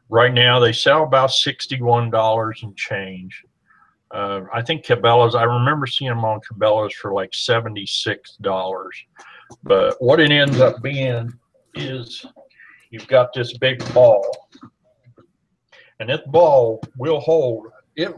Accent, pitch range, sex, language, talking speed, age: American, 115-135 Hz, male, English, 130 wpm, 60-79